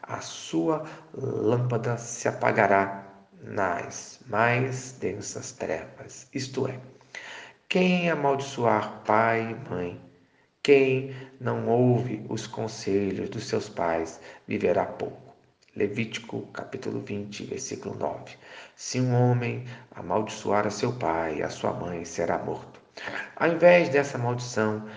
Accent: Brazilian